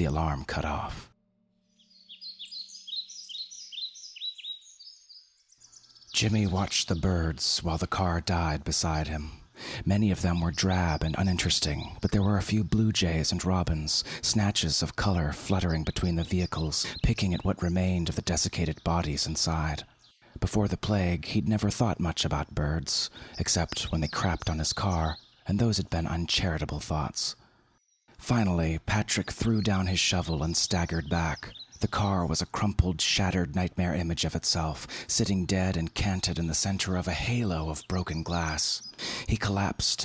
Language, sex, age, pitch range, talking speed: English, male, 30-49, 80-100 Hz, 155 wpm